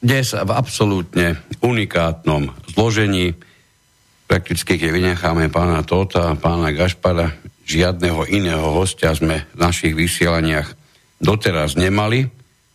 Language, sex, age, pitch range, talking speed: Slovak, male, 60-79, 80-95 Hz, 105 wpm